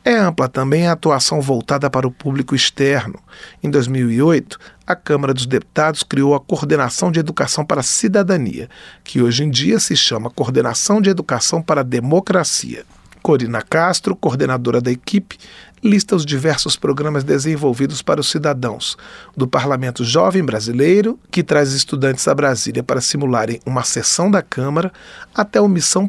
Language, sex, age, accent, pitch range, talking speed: Portuguese, male, 40-59, Brazilian, 135-180 Hz, 155 wpm